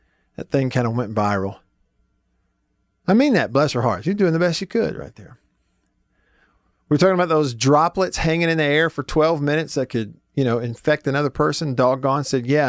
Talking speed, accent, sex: 200 wpm, American, male